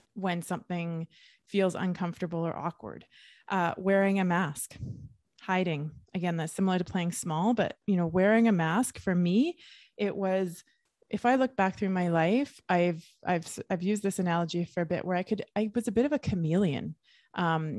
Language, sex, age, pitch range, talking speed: English, female, 20-39, 170-215 Hz, 180 wpm